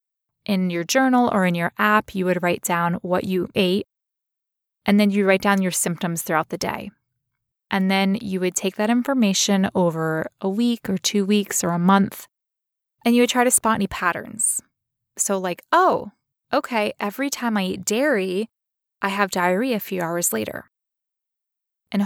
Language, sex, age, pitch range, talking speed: English, female, 20-39, 185-210 Hz, 175 wpm